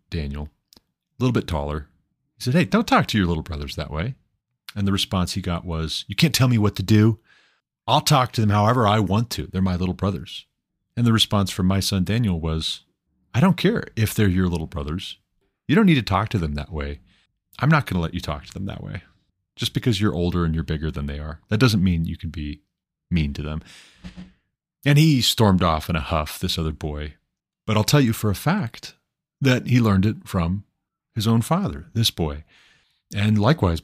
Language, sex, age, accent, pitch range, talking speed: English, male, 30-49, American, 85-115 Hz, 220 wpm